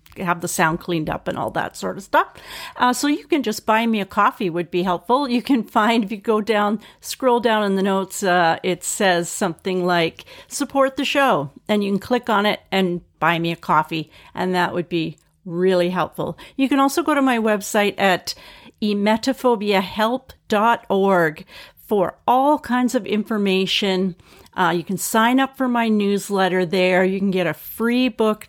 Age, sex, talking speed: 50-69, female, 185 wpm